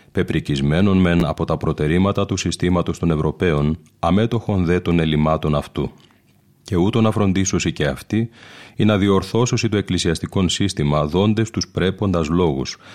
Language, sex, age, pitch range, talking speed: Greek, male, 30-49, 80-100 Hz, 140 wpm